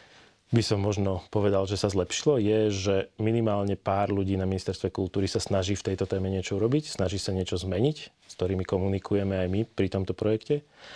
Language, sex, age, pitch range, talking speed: Slovak, male, 30-49, 95-110 Hz, 185 wpm